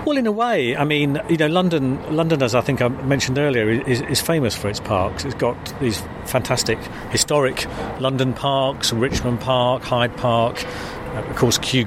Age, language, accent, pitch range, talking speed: 50-69, English, British, 110-130 Hz, 185 wpm